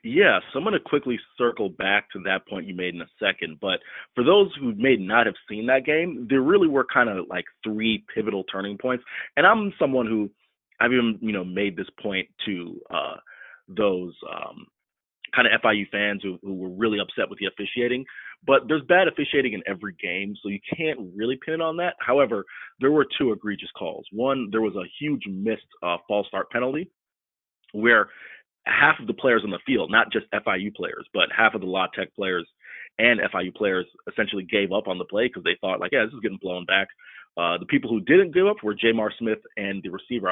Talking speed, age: 215 wpm, 30-49